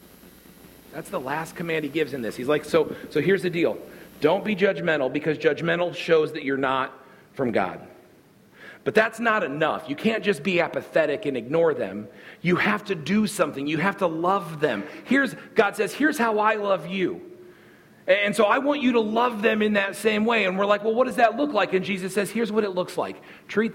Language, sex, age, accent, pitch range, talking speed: English, male, 40-59, American, 140-205 Hz, 215 wpm